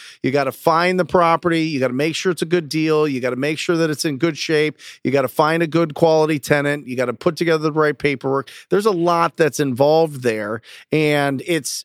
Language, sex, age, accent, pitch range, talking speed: English, male, 40-59, American, 140-175 Hz, 250 wpm